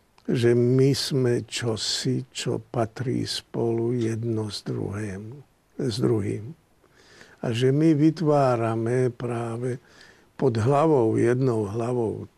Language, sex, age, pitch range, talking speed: Slovak, male, 50-69, 110-130 Hz, 100 wpm